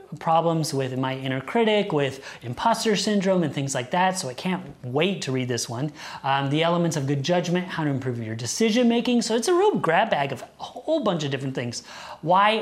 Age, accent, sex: 30-49, American, male